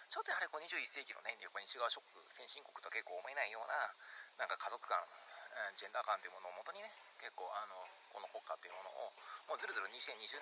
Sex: male